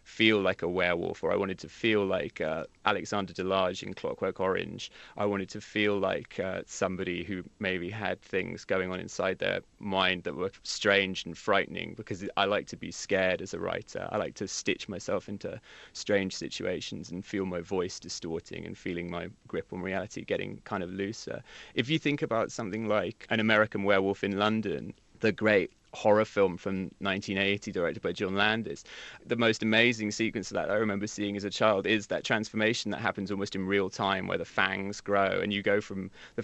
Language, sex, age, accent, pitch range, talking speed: English, male, 20-39, British, 95-110 Hz, 200 wpm